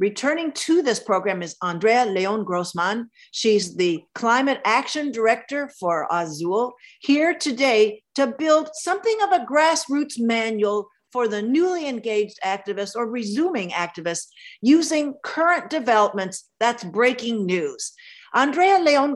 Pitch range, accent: 190-265 Hz, American